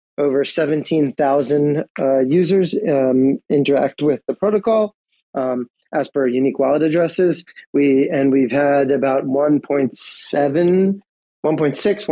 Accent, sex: American, male